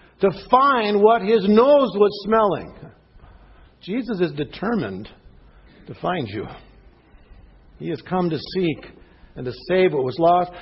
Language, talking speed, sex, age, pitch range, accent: English, 135 wpm, male, 60-79, 145-215 Hz, American